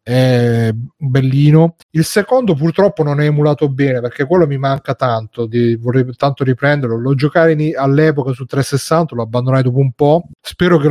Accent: native